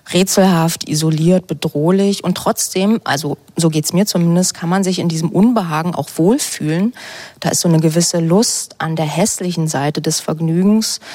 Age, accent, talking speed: 20-39, German, 160 wpm